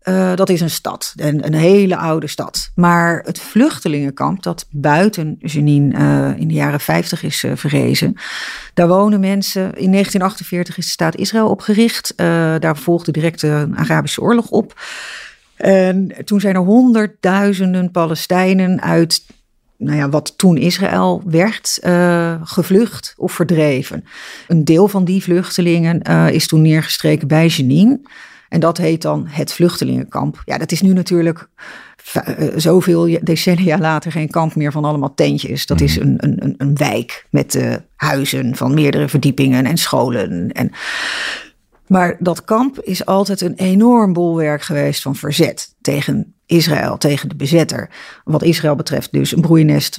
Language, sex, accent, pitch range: Dutch, female, Dutch, 150-185 Hz